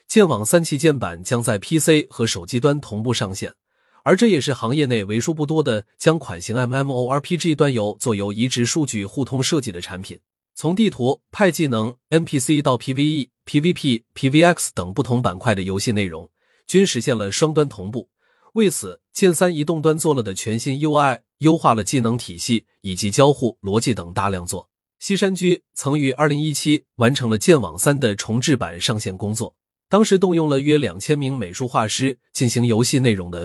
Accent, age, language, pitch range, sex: native, 30-49, Chinese, 110-155 Hz, male